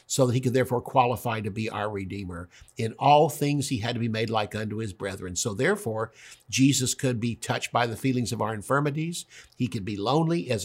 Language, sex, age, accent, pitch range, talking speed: English, male, 60-79, American, 105-130 Hz, 220 wpm